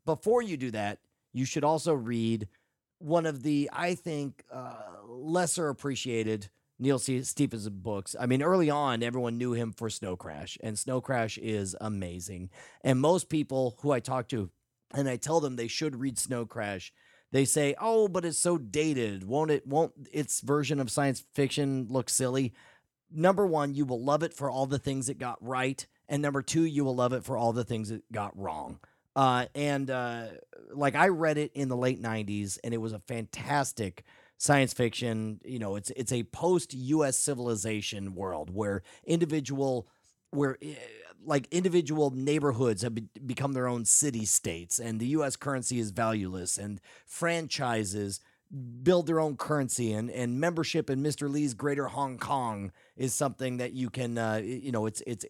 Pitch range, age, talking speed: 115-145 Hz, 30-49, 180 wpm